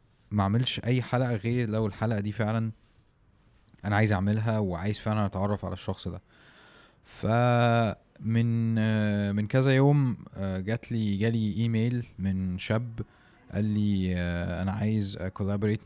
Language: Arabic